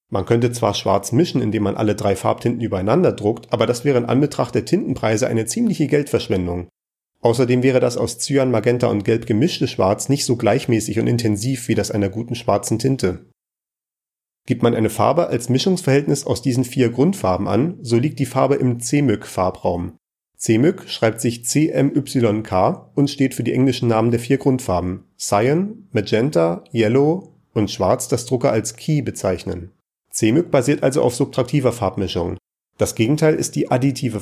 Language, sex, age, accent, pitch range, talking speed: German, male, 40-59, German, 110-135 Hz, 165 wpm